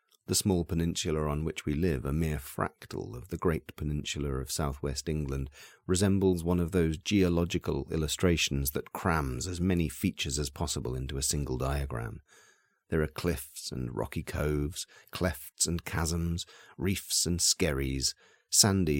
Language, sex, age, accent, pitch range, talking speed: English, male, 40-59, British, 70-90 Hz, 150 wpm